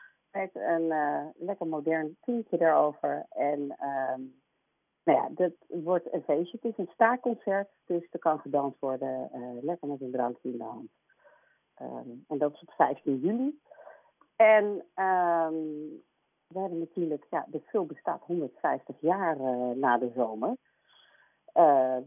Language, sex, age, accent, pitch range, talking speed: Dutch, female, 50-69, Dutch, 135-205 Hz, 150 wpm